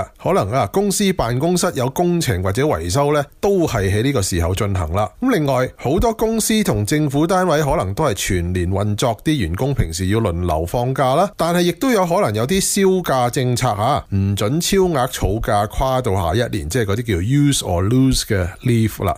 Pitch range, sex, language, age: 105-165 Hz, male, Chinese, 30-49